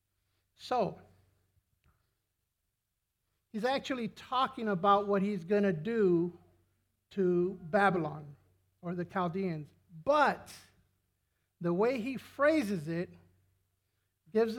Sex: male